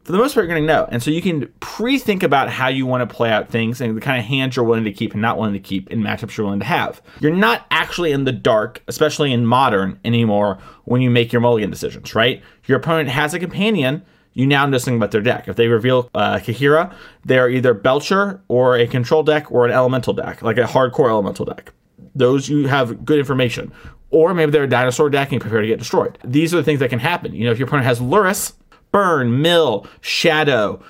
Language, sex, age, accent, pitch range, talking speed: English, male, 30-49, American, 115-145 Hz, 245 wpm